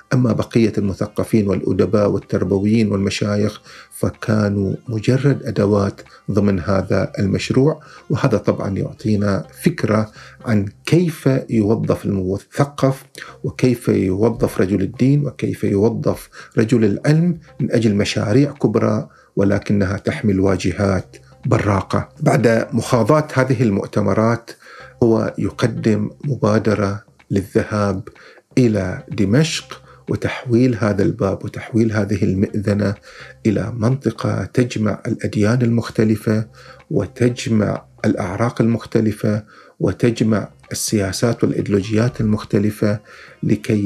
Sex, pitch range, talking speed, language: male, 100-120 Hz, 90 wpm, Arabic